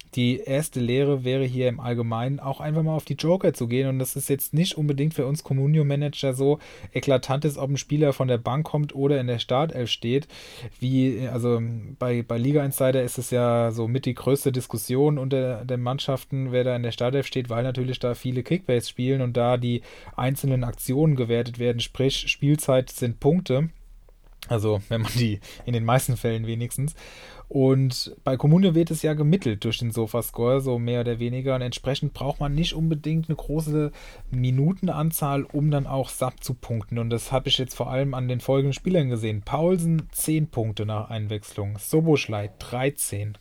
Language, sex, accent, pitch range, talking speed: German, male, German, 120-140 Hz, 190 wpm